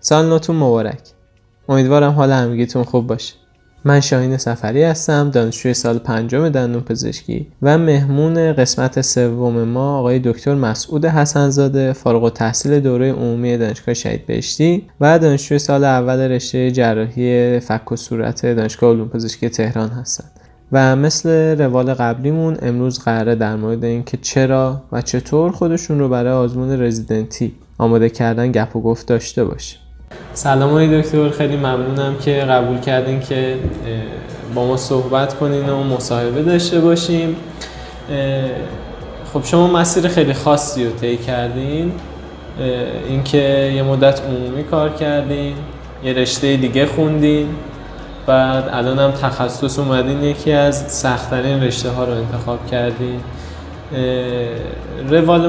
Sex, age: male, 10-29